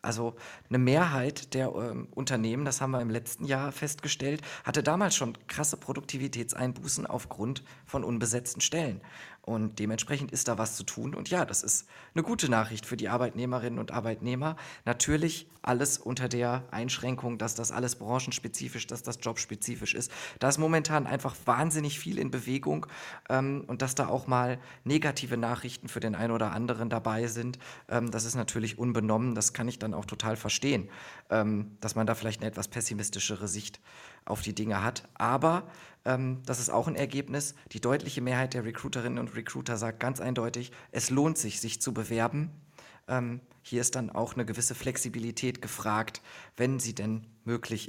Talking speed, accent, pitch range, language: 170 wpm, German, 110-130 Hz, German